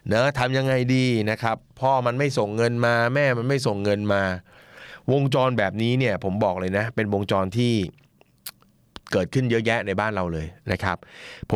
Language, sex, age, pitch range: Thai, male, 20-39, 95-130 Hz